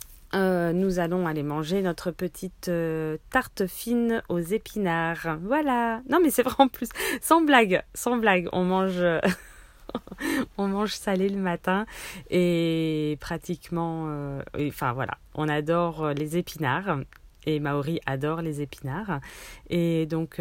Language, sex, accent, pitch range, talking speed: French, female, French, 160-210 Hz, 130 wpm